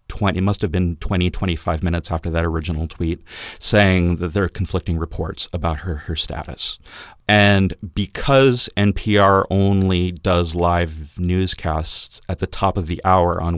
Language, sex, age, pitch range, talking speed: English, male, 40-59, 85-100 Hz, 155 wpm